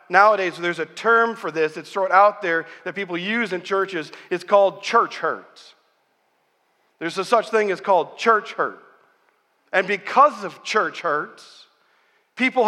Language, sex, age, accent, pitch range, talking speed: English, male, 40-59, American, 200-280 Hz, 155 wpm